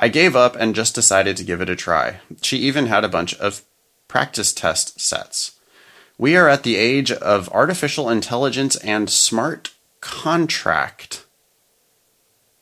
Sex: male